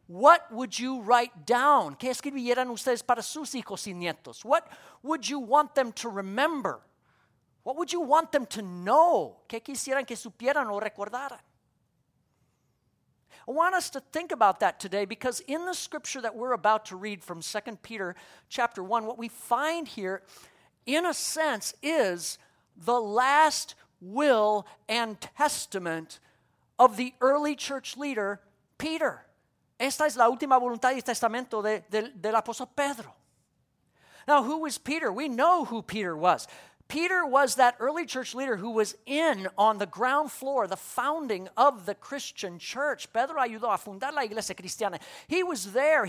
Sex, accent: male, American